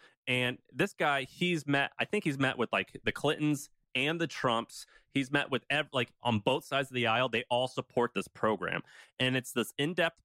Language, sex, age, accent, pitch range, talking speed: English, male, 30-49, American, 115-140 Hz, 210 wpm